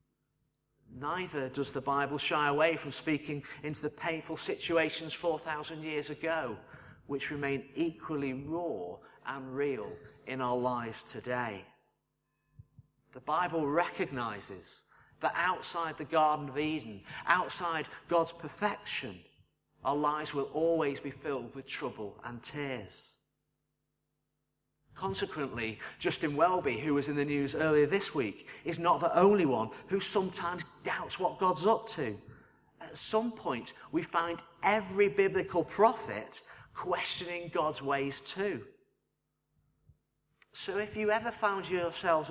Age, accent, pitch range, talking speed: 40-59, British, 140-185 Hz, 125 wpm